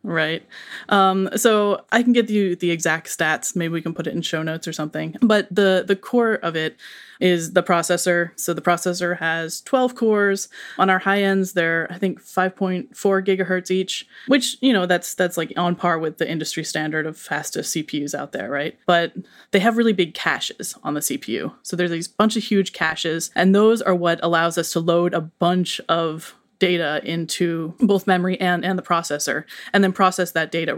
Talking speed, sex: 200 wpm, female